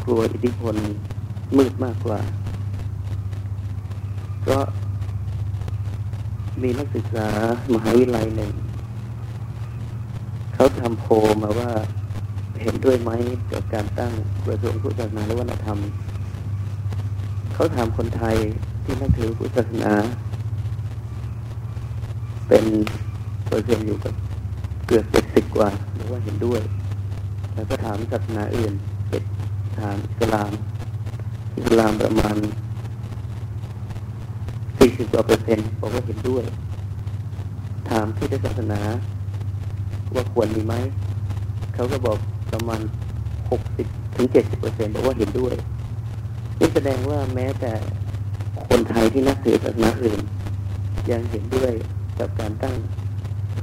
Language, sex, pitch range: Thai, male, 105-110 Hz